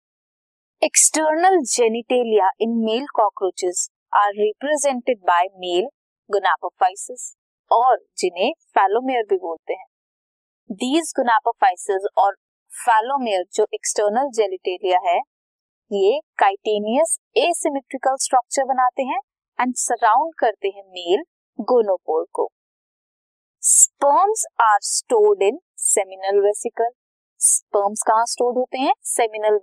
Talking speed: 95 wpm